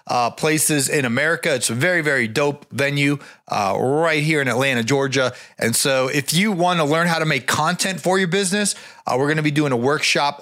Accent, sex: American, male